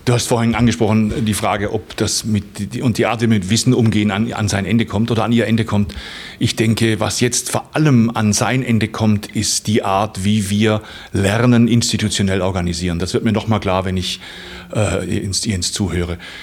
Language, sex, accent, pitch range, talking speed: German, male, German, 105-120 Hz, 200 wpm